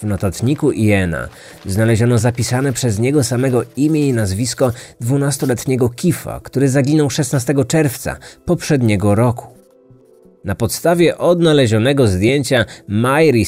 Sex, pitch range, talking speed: male, 100-140 Hz, 105 wpm